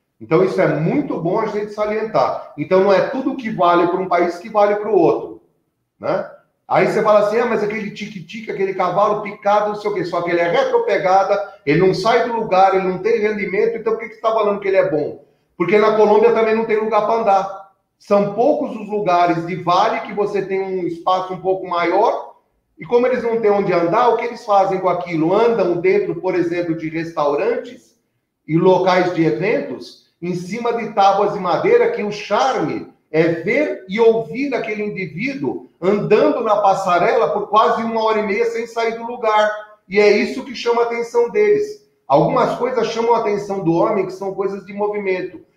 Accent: Brazilian